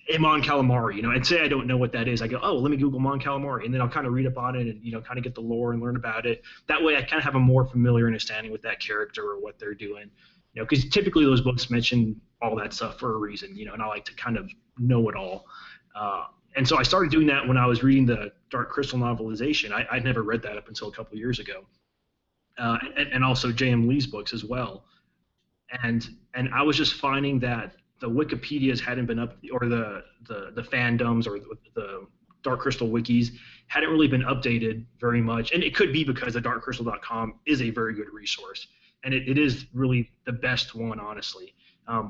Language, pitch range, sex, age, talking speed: English, 115-135 Hz, male, 30-49, 240 wpm